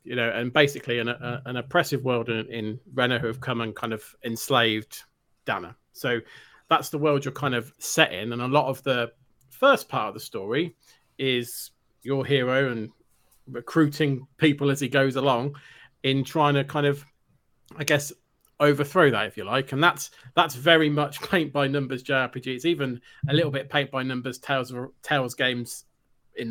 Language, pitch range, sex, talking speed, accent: English, 120-145 Hz, male, 175 wpm, British